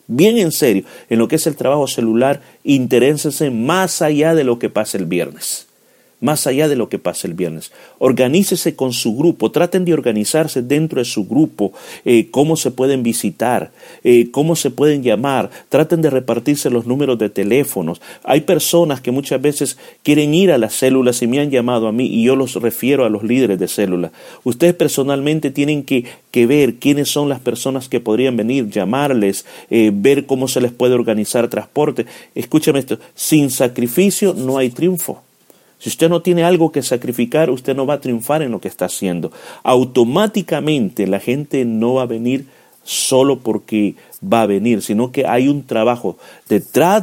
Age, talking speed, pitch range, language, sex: 40-59, 185 wpm, 120-150 Hz, Spanish, male